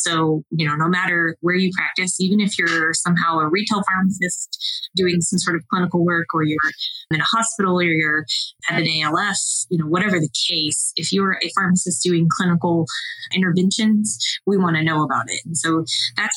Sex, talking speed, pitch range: female, 190 wpm, 160-200 Hz